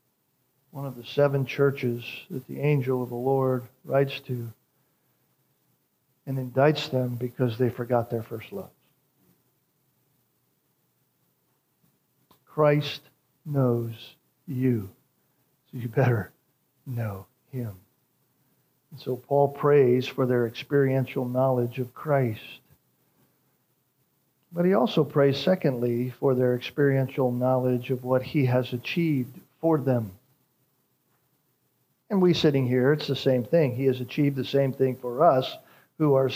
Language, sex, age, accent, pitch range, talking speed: English, male, 50-69, American, 130-170 Hz, 120 wpm